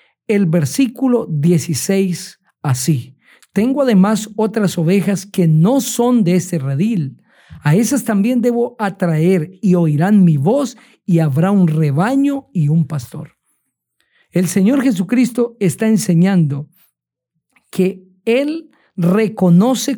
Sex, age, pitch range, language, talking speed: male, 50-69, 160-220 Hz, Spanish, 115 wpm